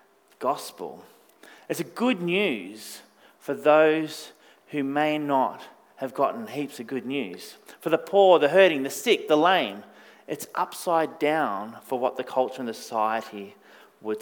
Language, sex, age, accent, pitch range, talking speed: English, male, 30-49, Australian, 135-185 Hz, 150 wpm